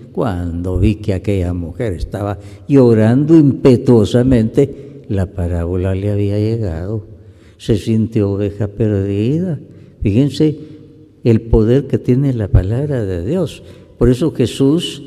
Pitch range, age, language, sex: 105-145 Hz, 60-79, Spanish, female